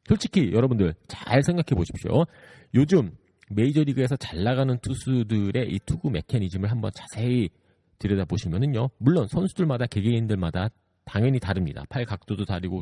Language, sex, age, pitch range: Korean, male, 40-59, 95-145 Hz